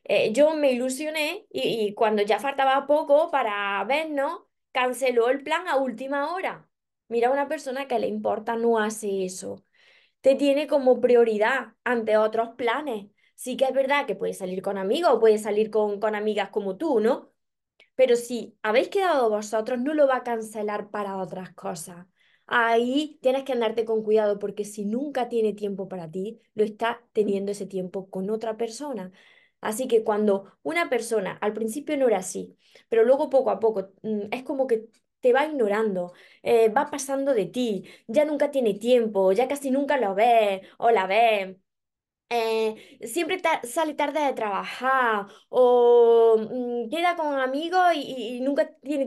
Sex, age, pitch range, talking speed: female, 20-39, 215-280 Hz, 170 wpm